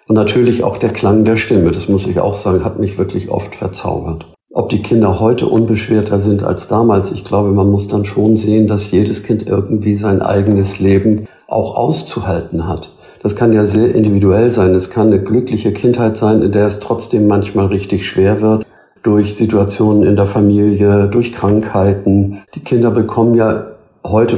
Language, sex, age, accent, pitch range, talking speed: German, male, 50-69, German, 95-110 Hz, 180 wpm